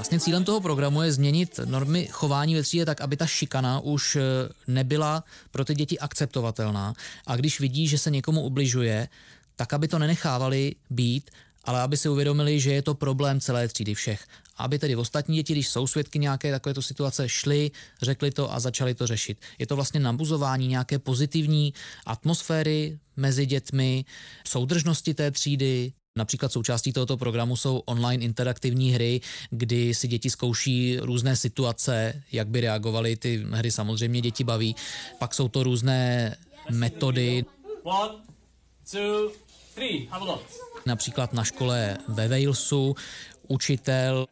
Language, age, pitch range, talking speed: Czech, 20-39, 120-145 Hz, 140 wpm